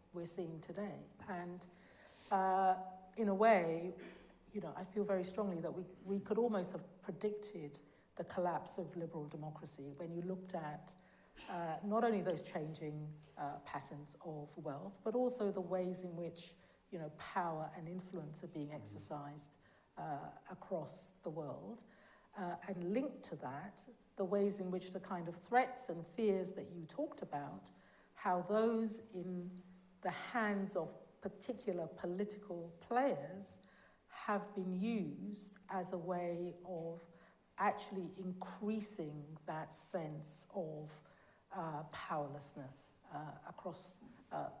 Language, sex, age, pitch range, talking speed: English, female, 60-79, 170-200 Hz, 135 wpm